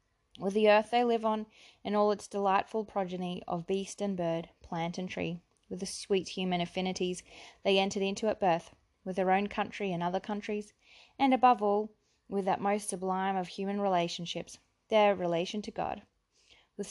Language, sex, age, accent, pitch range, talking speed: English, female, 20-39, Australian, 175-210 Hz, 180 wpm